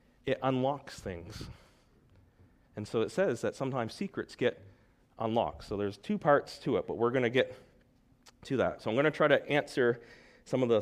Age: 40-59